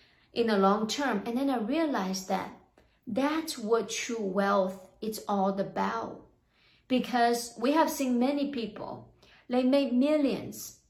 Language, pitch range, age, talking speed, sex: English, 200-250 Hz, 30-49, 140 wpm, female